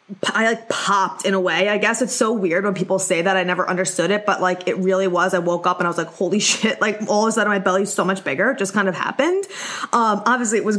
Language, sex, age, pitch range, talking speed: English, female, 20-39, 190-240 Hz, 290 wpm